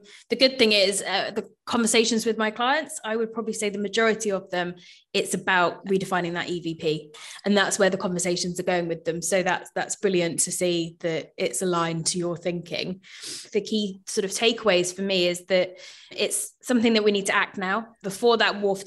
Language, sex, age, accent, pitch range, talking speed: English, female, 20-39, British, 180-215 Hz, 205 wpm